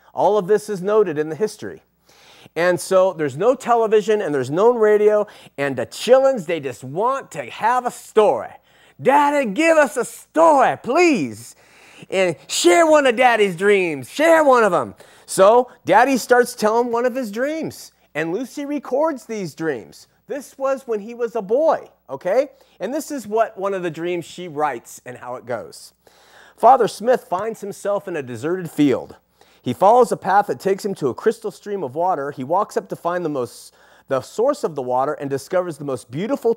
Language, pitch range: English, 170-240 Hz